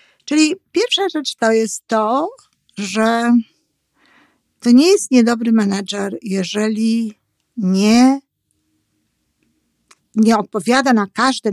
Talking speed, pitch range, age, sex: 95 wpm, 210-245 Hz, 50-69, female